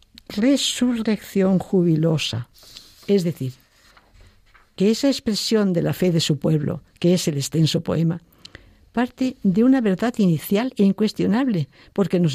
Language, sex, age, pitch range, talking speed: Spanish, female, 60-79, 150-200 Hz, 130 wpm